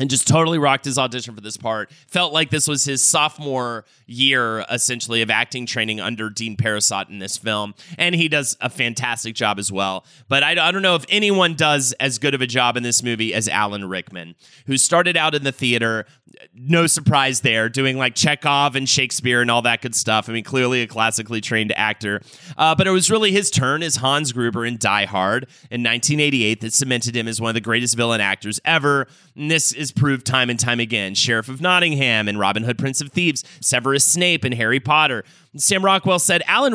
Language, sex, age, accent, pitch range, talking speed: English, male, 30-49, American, 115-150 Hz, 215 wpm